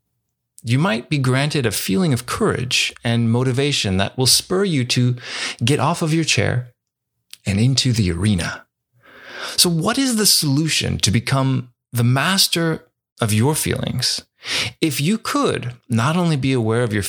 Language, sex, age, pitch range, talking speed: English, male, 30-49, 115-145 Hz, 160 wpm